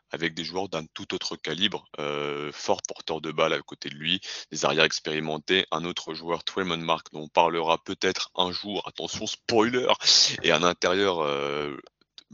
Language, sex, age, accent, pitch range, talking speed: French, male, 30-49, French, 75-90 Hz, 175 wpm